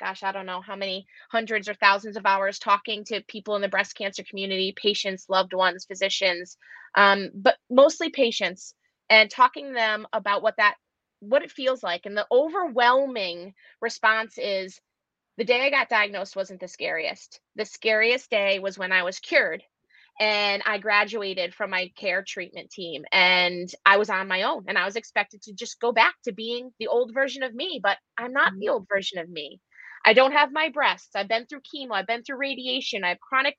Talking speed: 200 wpm